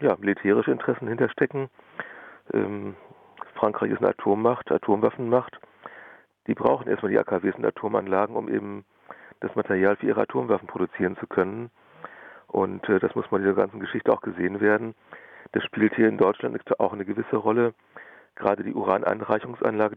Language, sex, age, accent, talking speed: German, male, 40-59, German, 145 wpm